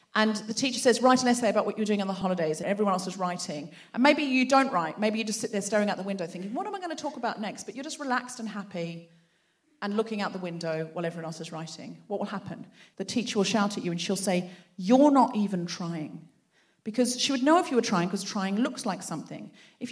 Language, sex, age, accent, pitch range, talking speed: English, female, 40-59, British, 195-260 Hz, 265 wpm